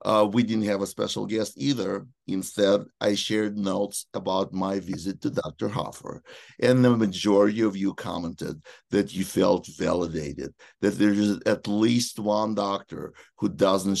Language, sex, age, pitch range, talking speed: English, male, 50-69, 90-105 Hz, 160 wpm